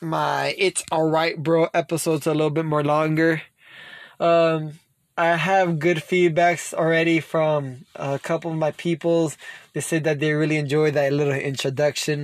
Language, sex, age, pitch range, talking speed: English, male, 20-39, 145-170 Hz, 155 wpm